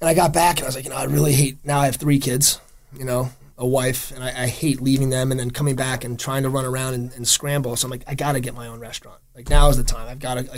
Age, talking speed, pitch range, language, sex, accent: 30-49, 330 wpm, 120-140 Hz, English, male, American